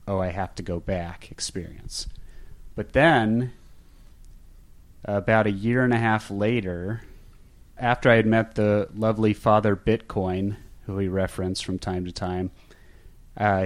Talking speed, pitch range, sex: 140 wpm, 95-115 Hz, male